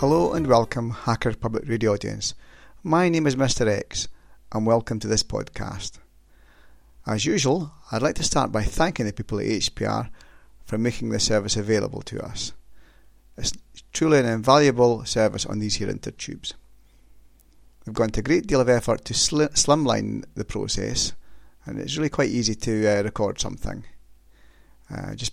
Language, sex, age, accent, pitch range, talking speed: English, male, 30-49, British, 105-130 Hz, 160 wpm